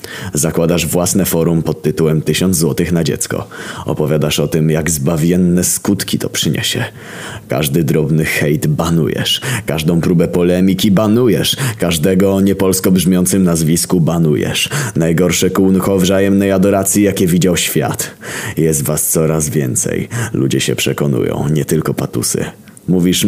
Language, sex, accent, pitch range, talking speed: Polish, male, native, 80-95 Hz, 125 wpm